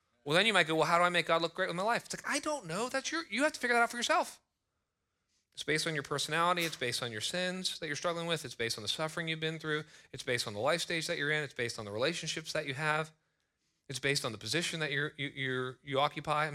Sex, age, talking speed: male, 40-59, 295 wpm